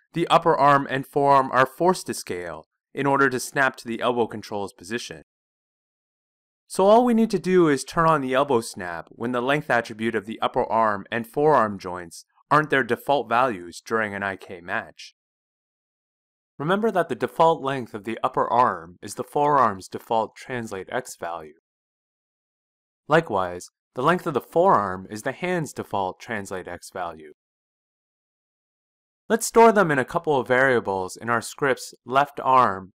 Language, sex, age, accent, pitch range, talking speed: English, male, 30-49, American, 105-145 Hz, 165 wpm